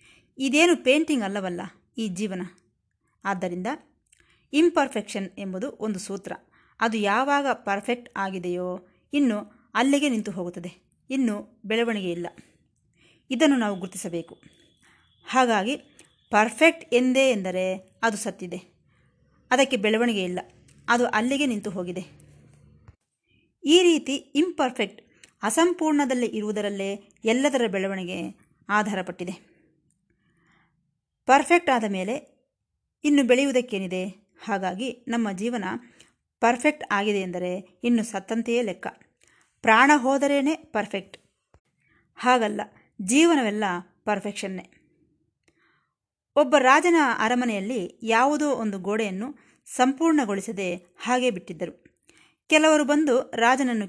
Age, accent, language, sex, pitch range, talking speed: 20-39, native, Kannada, female, 195-270 Hz, 85 wpm